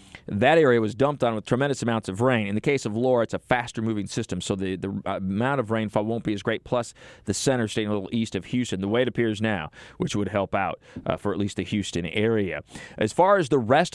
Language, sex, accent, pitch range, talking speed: English, male, American, 105-125 Hz, 260 wpm